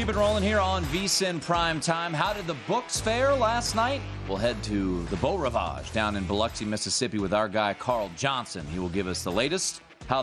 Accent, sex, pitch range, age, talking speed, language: American, male, 85-110 Hz, 30-49, 215 wpm, English